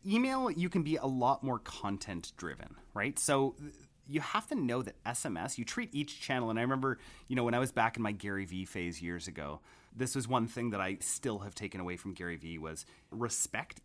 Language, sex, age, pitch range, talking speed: English, male, 30-49, 95-135 Hz, 225 wpm